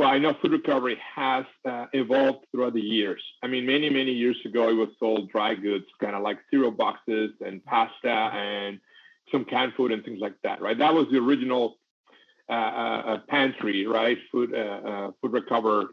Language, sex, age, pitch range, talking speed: English, male, 40-59, 115-145 Hz, 190 wpm